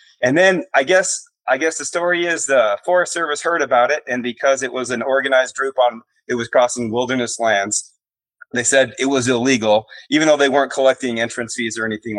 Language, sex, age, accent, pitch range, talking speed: English, male, 30-49, American, 120-150 Hz, 205 wpm